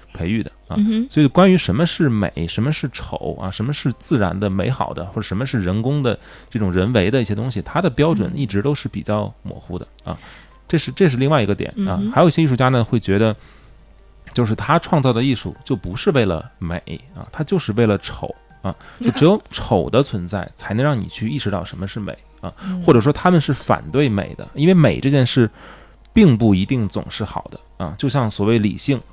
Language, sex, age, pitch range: Chinese, male, 20-39, 100-140 Hz